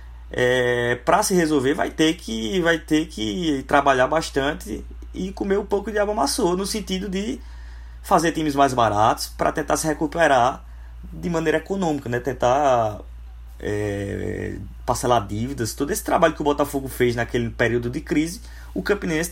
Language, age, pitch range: Portuguese, 20-39, 100-145 Hz